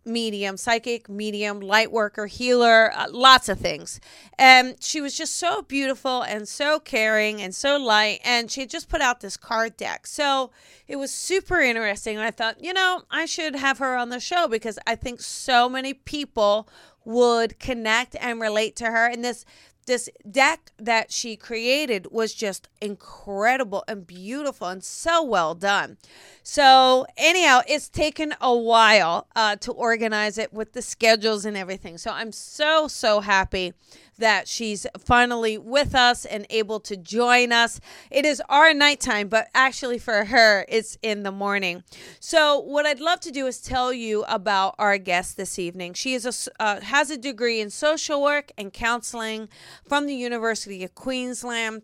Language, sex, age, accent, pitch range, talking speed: English, female, 30-49, American, 215-265 Hz, 170 wpm